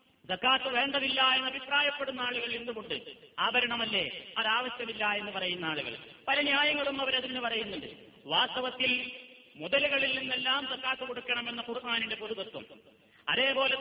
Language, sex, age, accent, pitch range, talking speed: Malayalam, male, 30-49, native, 235-275 Hz, 95 wpm